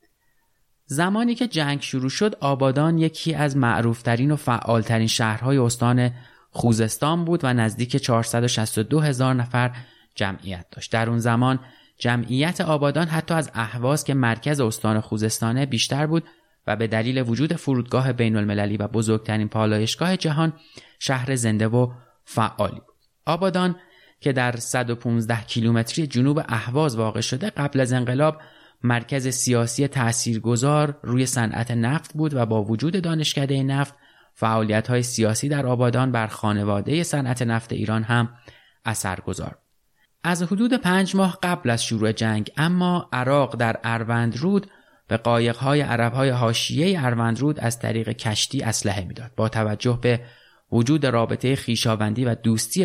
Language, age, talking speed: Persian, 30-49, 135 wpm